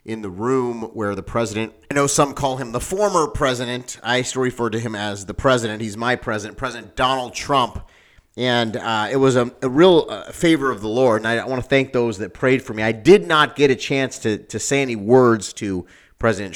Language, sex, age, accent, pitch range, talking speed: English, male, 30-49, American, 105-130 Hz, 230 wpm